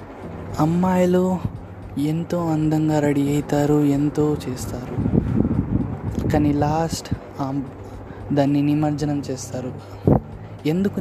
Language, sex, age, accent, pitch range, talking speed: Telugu, male, 20-39, native, 125-155 Hz, 70 wpm